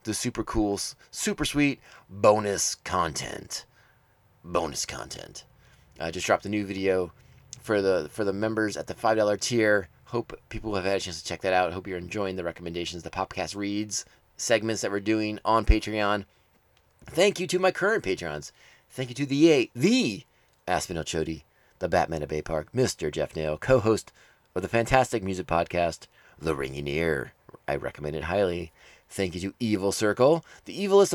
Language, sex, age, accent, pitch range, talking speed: English, male, 30-49, American, 90-120 Hz, 170 wpm